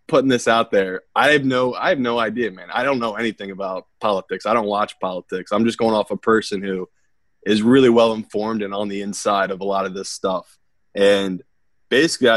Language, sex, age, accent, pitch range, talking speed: English, male, 20-39, American, 100-120 Hz, 220 wpm